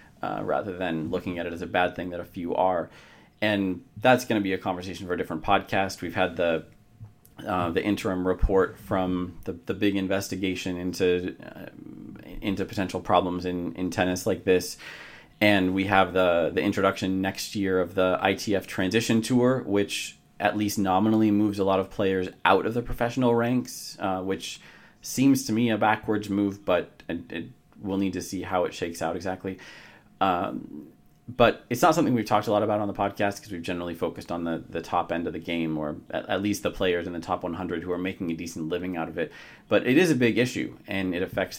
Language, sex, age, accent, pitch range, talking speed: English, male, 30-49, American, 90-105 Hz, 210 wpm